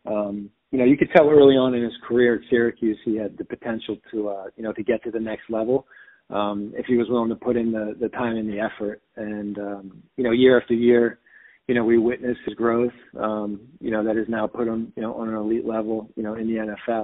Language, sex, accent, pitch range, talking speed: English, male, American, 105-120 Hz, 255 wpm